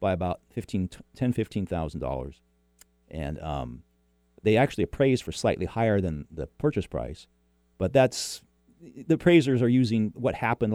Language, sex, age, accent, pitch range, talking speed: English, male, 40-59, American, 75-120 Hz, 140 wpm